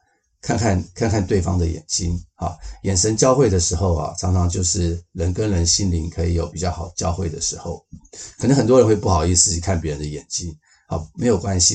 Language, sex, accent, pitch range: Chinese, male, native, 85-100 Hz